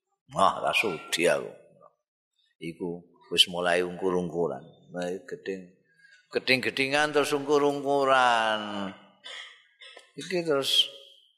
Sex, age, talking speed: male, 50-69, 85 wpm